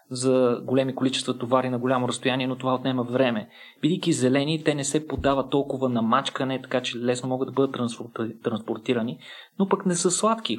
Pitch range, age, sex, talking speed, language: 130-170 Hz, 20-39, male, 180 wpm, Bulgarian